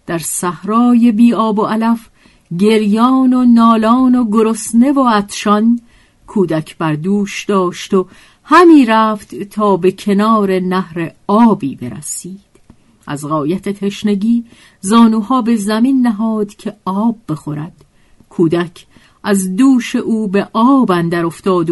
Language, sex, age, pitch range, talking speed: Persian, female, 50-69, 180-235 Hz, 120 wpm